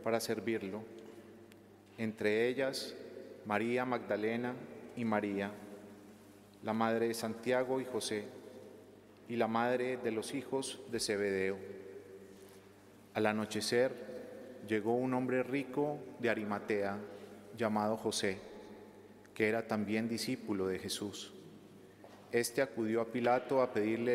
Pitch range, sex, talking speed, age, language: 105-125 Hz, male, 110 wpm, 30-49, Spanish